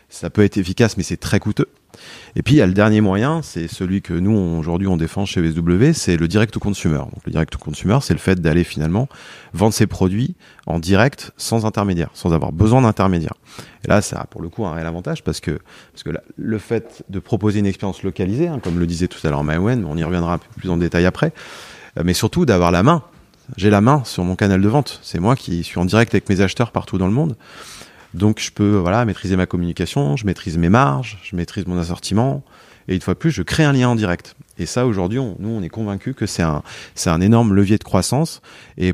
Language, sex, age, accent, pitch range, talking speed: French, male, 30-49, French, 90-115 Hz, 245 wpm